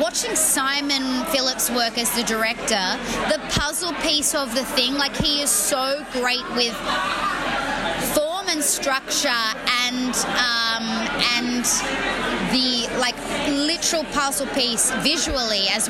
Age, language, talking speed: 20-39, English, 120 wpm